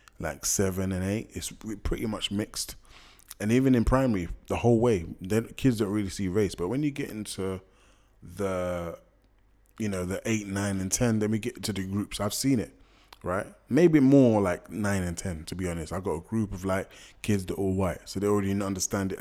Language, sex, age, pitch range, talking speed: English, male, 20-39, 95-110 Hz, 210 wpm